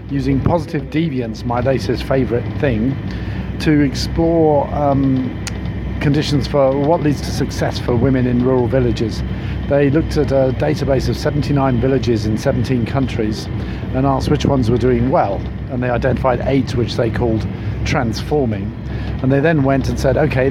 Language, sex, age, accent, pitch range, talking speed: English, male, 50-69, British, 110-140 Hz, 160 wpm